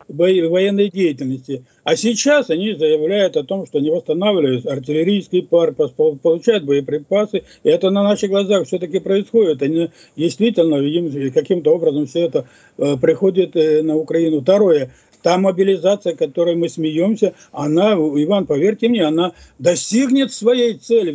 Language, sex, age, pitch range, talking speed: Russian, male, 50-69, 160-225 Hz, 130 wpm